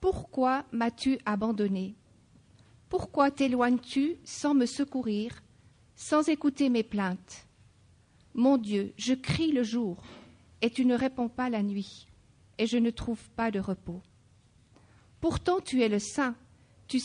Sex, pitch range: female, 210-270 Hz